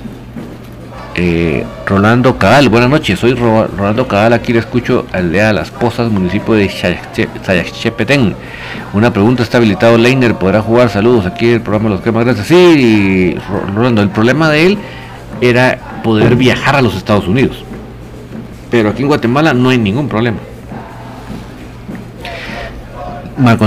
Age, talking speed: 50-69, 145 wpm